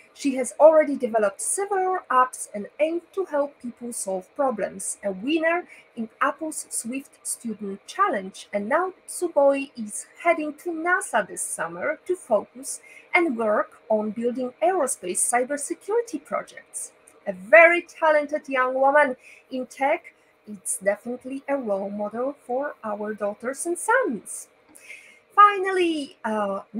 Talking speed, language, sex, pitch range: 130 wpm, English, female, 215-310 Hz